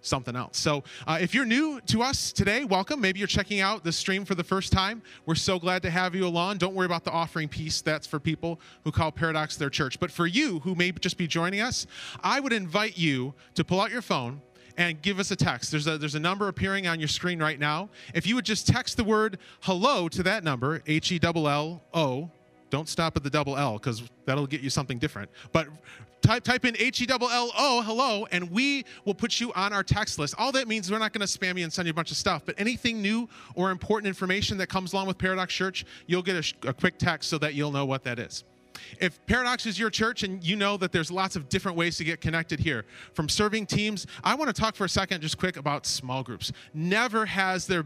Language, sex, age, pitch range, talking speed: English, male, 30-49, 155-200 Hz, 240 wpm